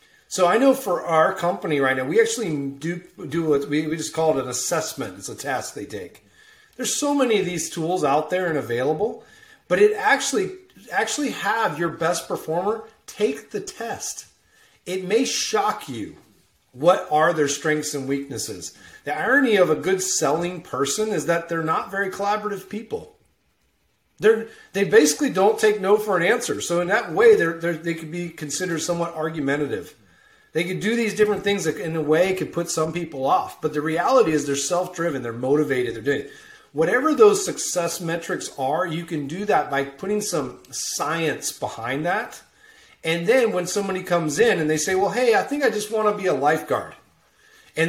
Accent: American